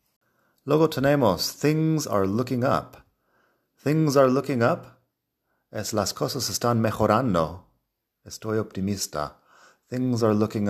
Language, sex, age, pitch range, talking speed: Spanish, male, 30-49, 90-120 Hz, 110 wpm